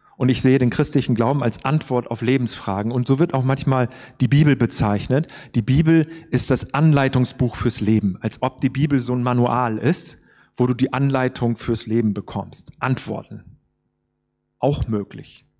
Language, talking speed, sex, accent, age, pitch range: German, 165 wpm, male, German, 40-59, 115-150 Hz